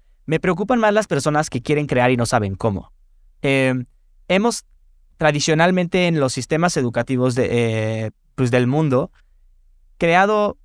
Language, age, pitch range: Spanish, 20-39, 120-155 Hz